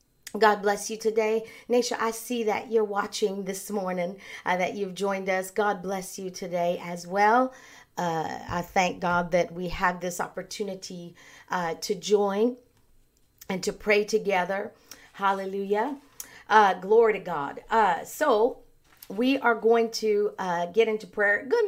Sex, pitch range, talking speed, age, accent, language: female, 190-245 Hz, 150 wpm, 50-69, American, English